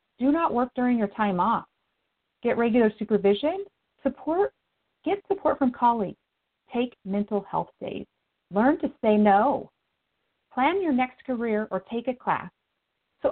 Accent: American